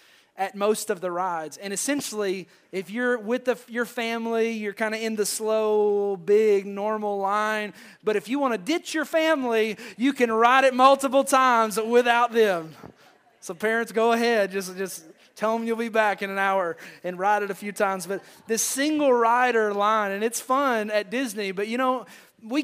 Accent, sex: American, male